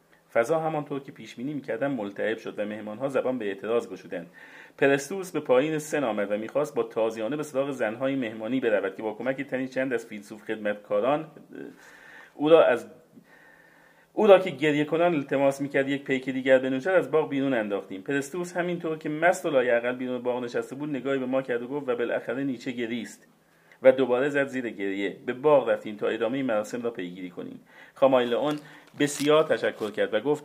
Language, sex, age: Persian, male, 40-59